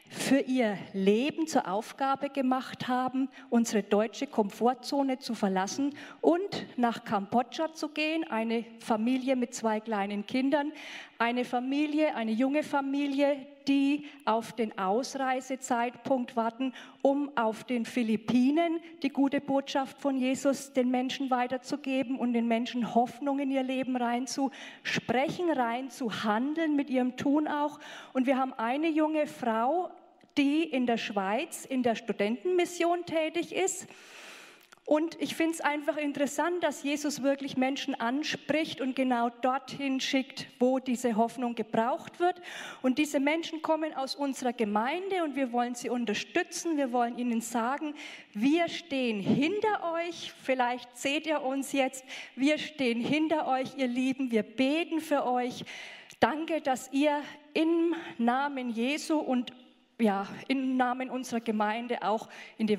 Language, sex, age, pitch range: German, female, 40-59, 235-295 Hz